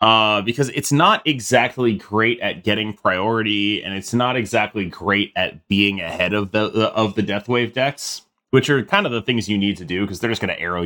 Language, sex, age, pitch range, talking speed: English, male, 30-49, 100-130 Hz, 215 wpm